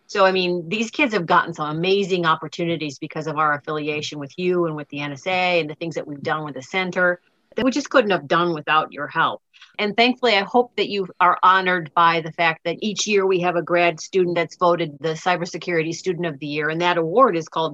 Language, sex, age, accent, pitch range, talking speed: English, female, 40-59, American, 160-190 Hz, 235 wpm